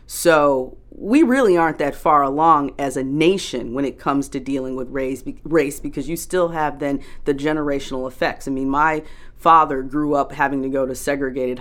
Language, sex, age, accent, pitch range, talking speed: English, female, 30-49, American, 130-160 Hz, 185 wpm